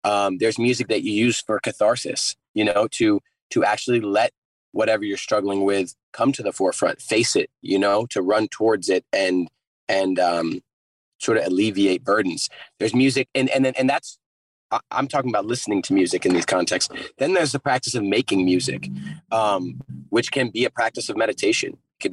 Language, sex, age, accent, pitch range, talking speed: English, male, 30-49, American, 105-135 Hz, 185 wpm